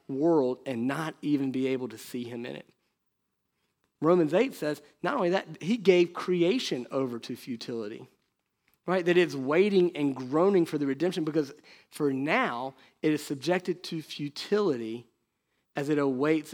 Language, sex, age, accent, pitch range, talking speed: English, male, 40-59, American, 135-175 Hz, 155 wpm